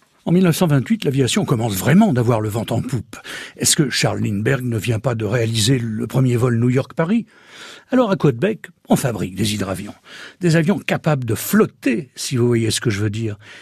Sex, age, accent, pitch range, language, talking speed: male, 60-79, French, 120-175 Hz, French, 200 wpm